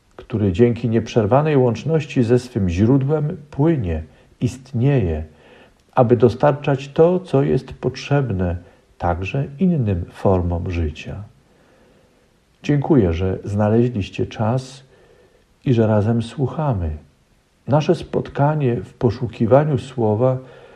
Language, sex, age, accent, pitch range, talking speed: Polish, male, 50-69, native, 100-135 Hz, 95 wpm